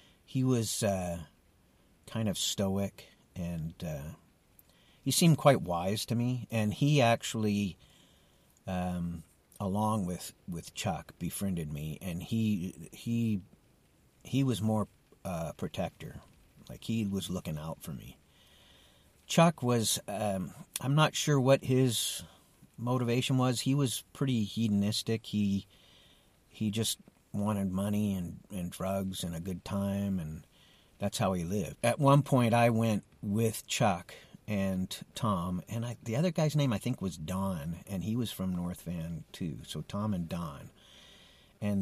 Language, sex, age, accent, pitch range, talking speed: English, male, 50-69, American, 90-115 Hz, 145 wpm